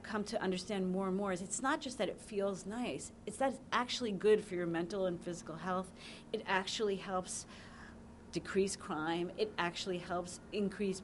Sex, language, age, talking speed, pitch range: female, English, 40-59, 185 wpm, 185-225 Hz